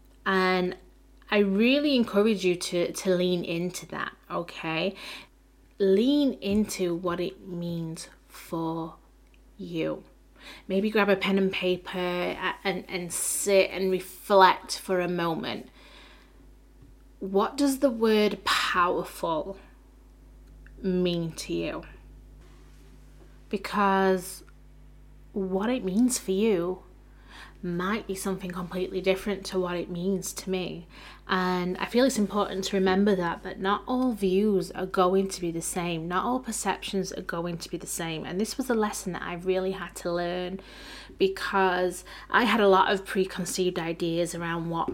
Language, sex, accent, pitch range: English, female, British, 180-200 Hz